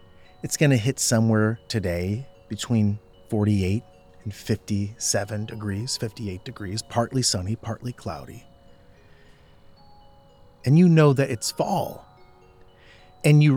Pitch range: 95-125 Hz